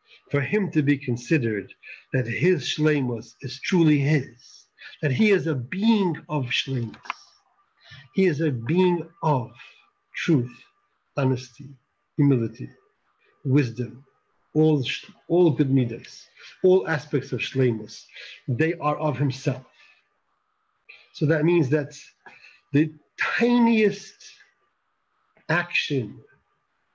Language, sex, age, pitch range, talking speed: English, male, 50-69, 130-165 Hz, 100 wpm